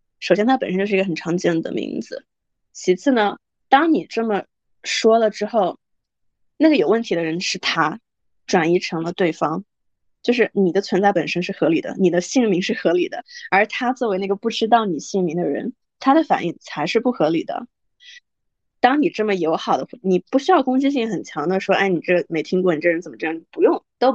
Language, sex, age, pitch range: English, female, 20-39, 185-250 Hz